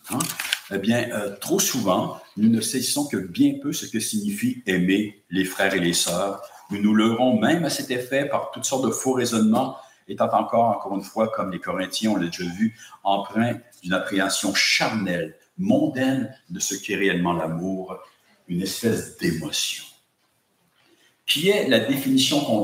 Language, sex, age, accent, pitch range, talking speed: English, male, 60-79, French, 110-160 Hz, 170 wpm